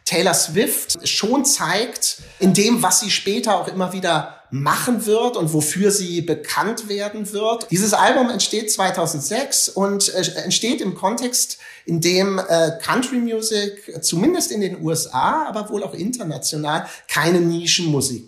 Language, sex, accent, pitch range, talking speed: German, male, German, 155-200 Hz, 140 wpm